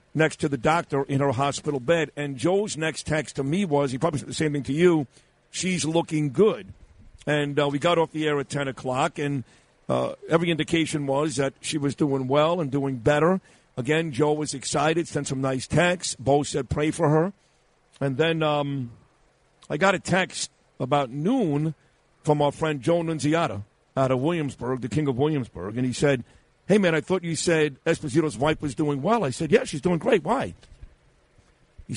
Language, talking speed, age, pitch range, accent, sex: English, 195 wpm, 50-69, 135-160 Hz, American, male